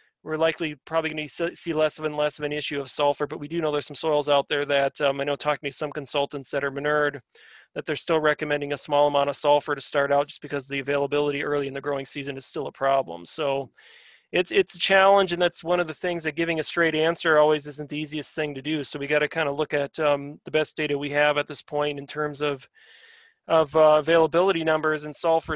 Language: English